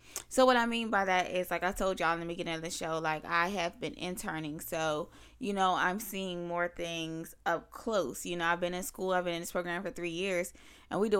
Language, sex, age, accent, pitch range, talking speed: English, female, 20-39, American, 170-210 Hz, 255 wpm